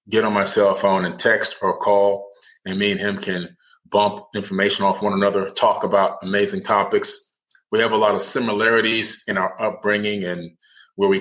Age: 30-49